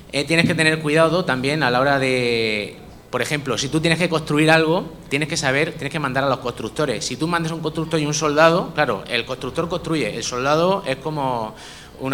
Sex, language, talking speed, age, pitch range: male, Spanish, 220 wpm, 30-49, 125-160 Hz